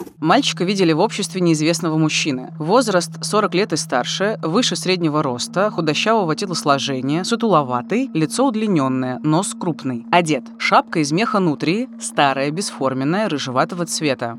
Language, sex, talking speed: Russian, female, 125 wpm